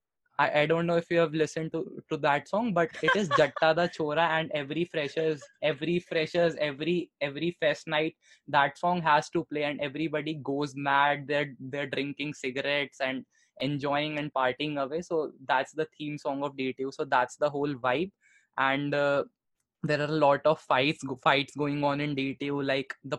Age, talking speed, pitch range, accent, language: 20-39, 185 wpm, 135-155 Hz, Indian, English